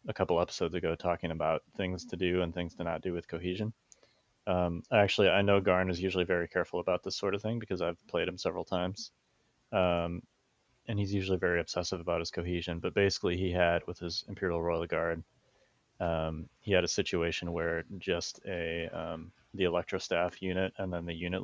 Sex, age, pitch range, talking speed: male, 30-49, 85-95 Hz, 200 wpm